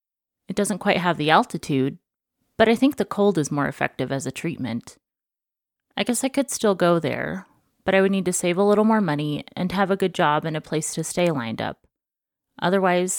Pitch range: 145-195 Hz